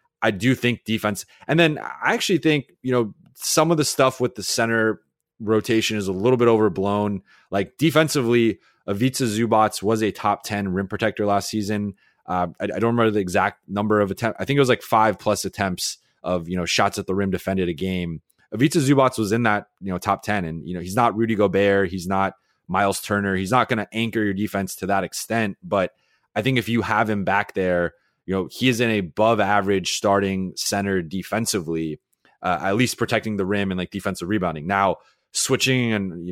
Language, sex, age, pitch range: English, male, 20-39, 95-115 Hz